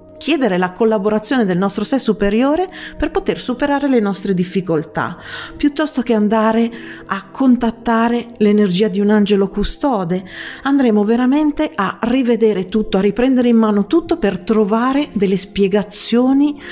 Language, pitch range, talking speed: Italian, 180-255 Hz, 135 wpm